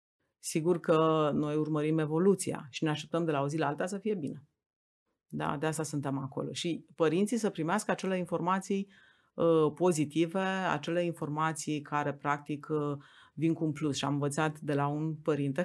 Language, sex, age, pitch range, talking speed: Romanian, female, 30-49, 145-175 Hz, 170 wpm